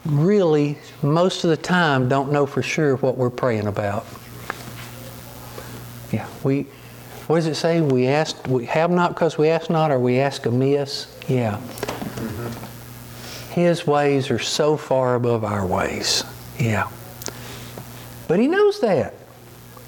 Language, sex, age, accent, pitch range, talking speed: English, male, 50-69, American, 120-170 Hz, 140 wpm